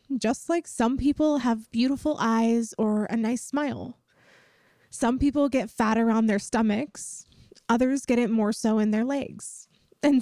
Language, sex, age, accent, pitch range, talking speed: English, female, 20-39, American, 220-280 Hz, 160 wpm